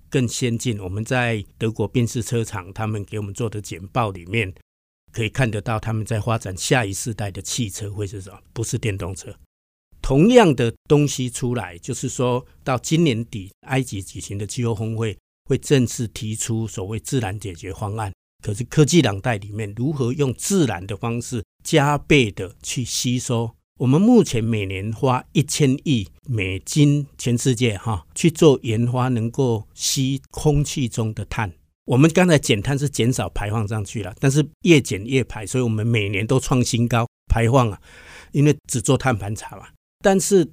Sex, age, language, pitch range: male, 50-69, Chinese, 105-130 Hz